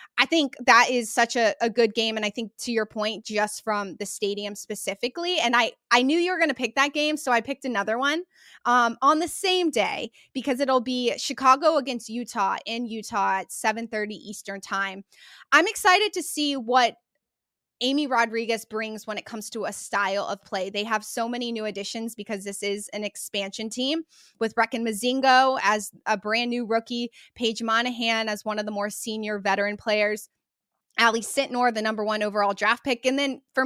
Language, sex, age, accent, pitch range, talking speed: English, female, 20-39, American, 210-255 Hz, 195 wpm